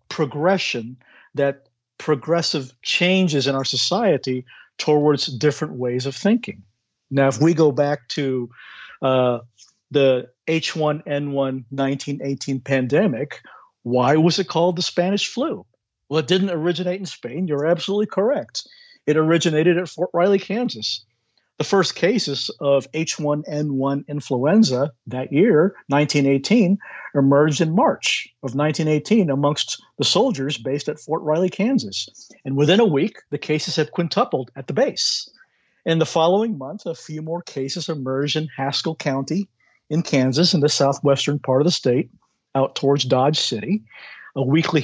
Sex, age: male, 50-69